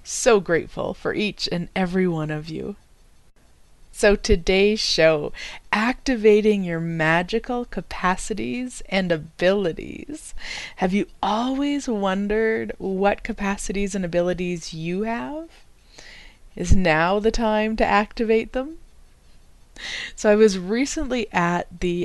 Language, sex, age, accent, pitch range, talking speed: English, female, 30-49, American, 170-220 Hz, 110 wpm